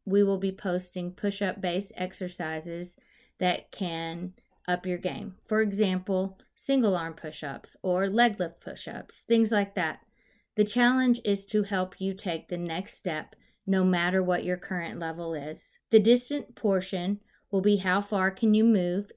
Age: 30-49